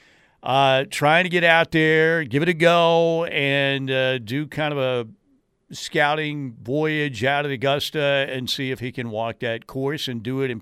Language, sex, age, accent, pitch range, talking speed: English, male, 50-69, American, 120-150 Hz, 185 wpm